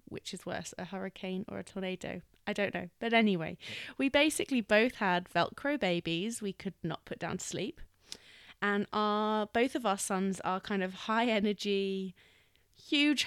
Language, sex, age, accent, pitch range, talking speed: English, female, 20-39, British, 185-230 Hz, 170 wpm